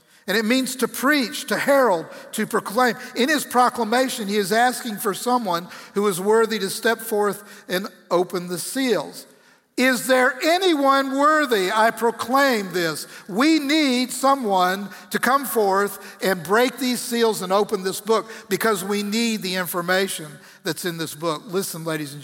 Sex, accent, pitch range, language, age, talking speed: male, American, 175-235 Hz, English, 50-69, 160 wpm